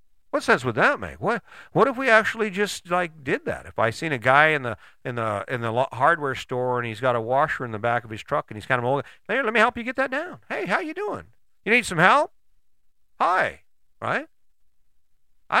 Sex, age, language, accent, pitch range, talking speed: male, 50-69, English, American, 125-210 Hz, 235 wpm